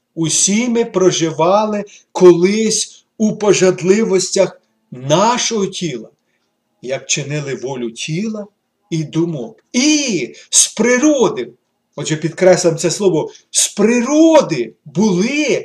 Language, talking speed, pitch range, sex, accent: Ukrainian, 90 wpm, 165-230 Hz, male, native